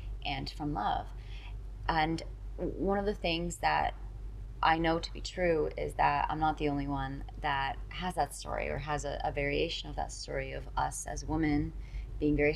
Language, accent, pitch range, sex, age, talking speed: English, American, 115-160 Hz, female, 20-39, 185 wpm